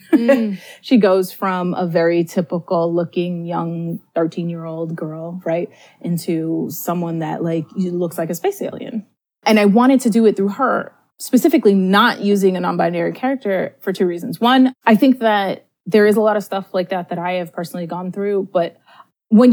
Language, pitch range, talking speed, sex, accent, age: English, 175-215 Hz, 180 wpm, female, American, 20-39